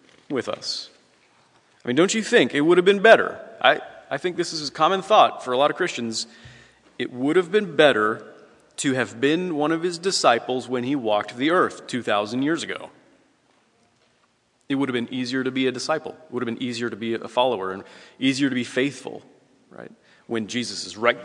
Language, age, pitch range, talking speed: English, 30-49, 115-140 Hz, 205 wpm